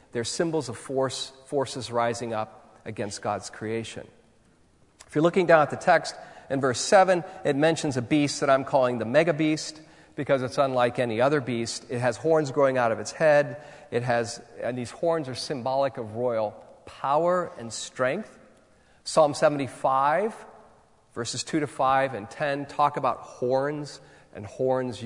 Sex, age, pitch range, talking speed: male, 40-59, 120-160 Hz, 165 wpm